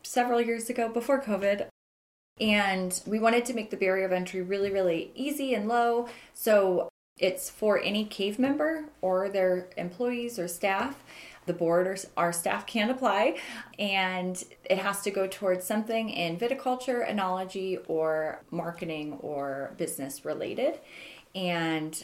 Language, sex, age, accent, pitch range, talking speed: English, female, 20-39, American, 170-225 Hz, 145 wpm